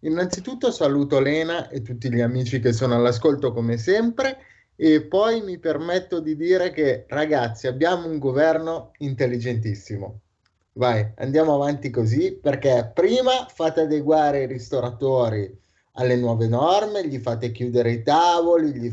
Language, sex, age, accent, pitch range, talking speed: Italian, male, 30-49, native, 120-175 Hz, 135 wpm